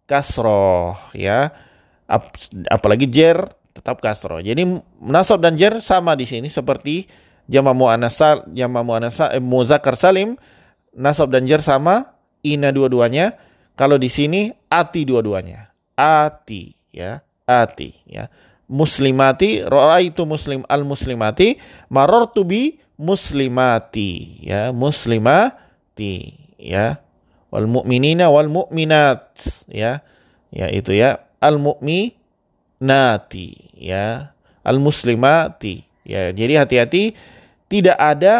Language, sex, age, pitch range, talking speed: Indonesian, male, 30-49, 120-170 Hz, 100 wpm